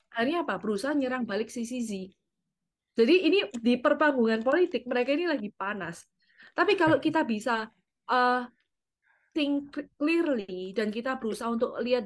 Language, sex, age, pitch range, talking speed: Indonesian, female, 20-39, 195-250 Hz, 135 wpm